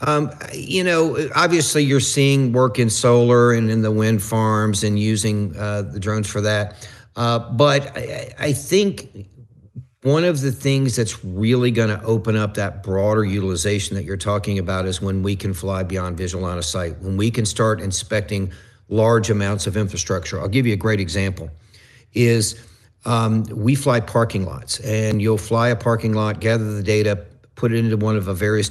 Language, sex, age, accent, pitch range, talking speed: English, male, 50-69, American, 105-120 Hz, 190 wpm